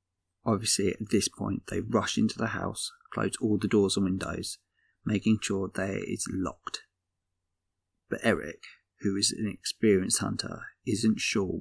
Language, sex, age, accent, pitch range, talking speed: English, male, 30-49, British, 95-110 Hz, 150 wpm